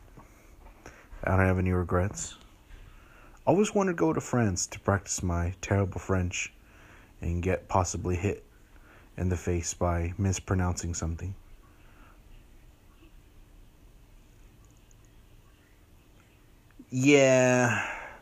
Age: 30-49